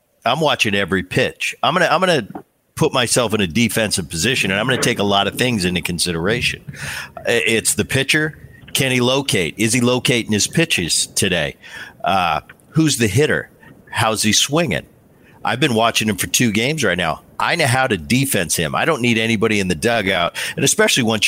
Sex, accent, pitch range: male, American, 105-145 Hz